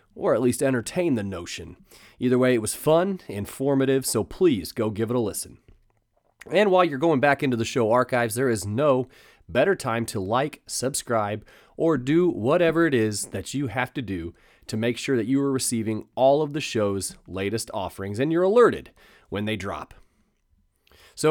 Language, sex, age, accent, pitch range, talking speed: English, male, 30-49, American, 110-145 Hz, 185 wpm